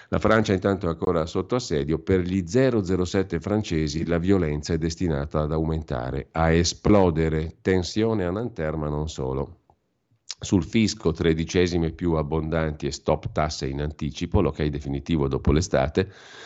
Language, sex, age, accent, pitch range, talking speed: Italian, male, 50-69, native, 75-90 Hz, 140 wpm